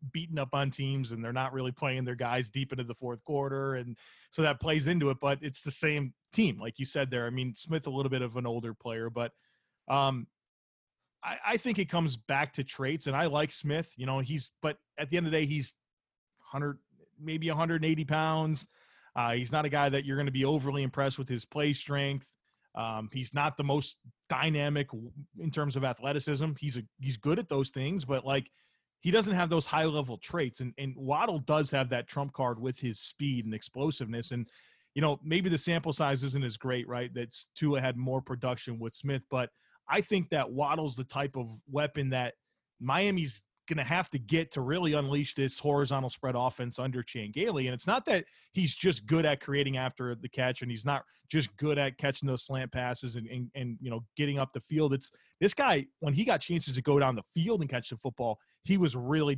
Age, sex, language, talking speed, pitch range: 30-49, male, English, 220 wpm, 125-150 Hz